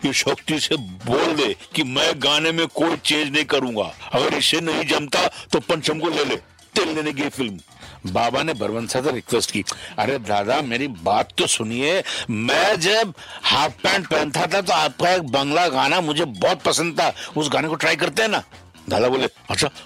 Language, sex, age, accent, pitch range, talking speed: Hindi, male, 60-79, native, 155-210 Hz, 180 wpm